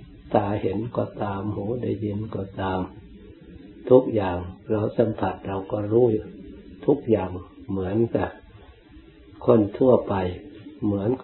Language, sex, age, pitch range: Thai, male, 60-79, 95-110 Hz